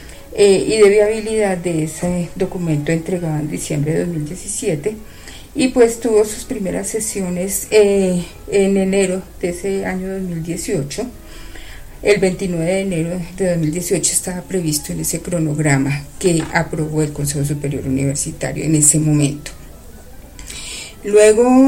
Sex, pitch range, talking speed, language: female, 155-195 Hz, 125 wpm, Spanish